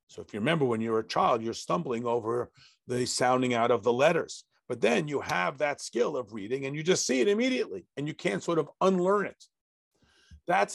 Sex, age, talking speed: male, 50-69, 225 wpm